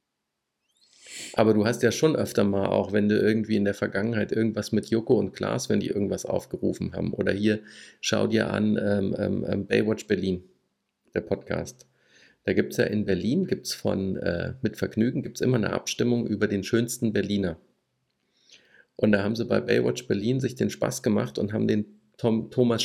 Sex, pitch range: male, 100-125 Hz